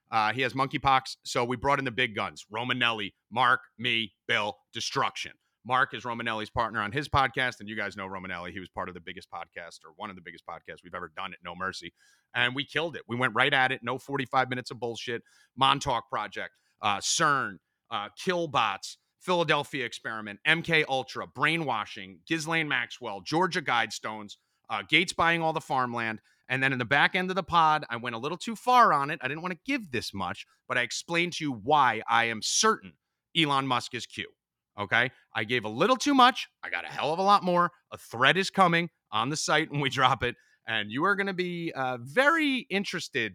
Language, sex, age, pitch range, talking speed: English, male, 30-49, 115-165 Hz, 210 wpm